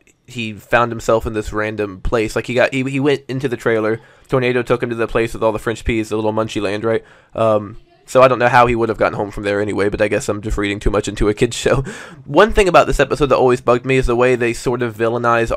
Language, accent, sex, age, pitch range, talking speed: English, American, male, 20-39, 110-125 Hz, 285 wpm